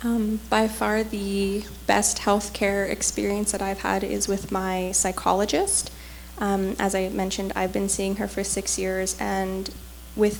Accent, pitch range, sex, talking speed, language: American, 190-210 Hz, female, 155 wpm, English